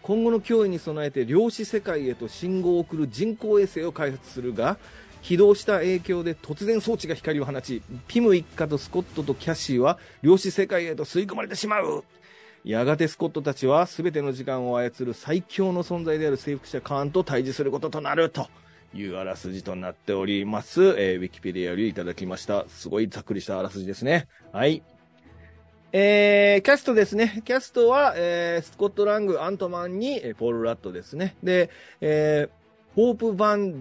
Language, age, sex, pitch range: Japanese, 30-49, male, 115-195 Hz